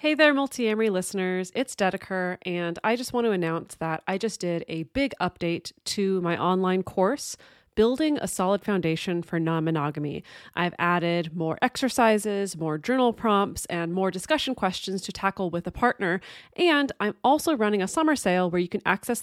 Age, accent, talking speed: 30-49, American, 180 wpm